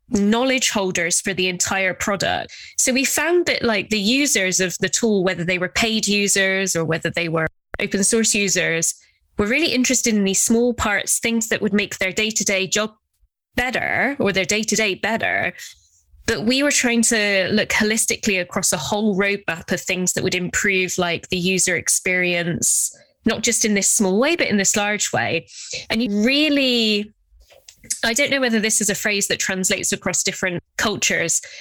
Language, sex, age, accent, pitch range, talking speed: English, female, 10-29, British, 185-225 Hz, 180 wpm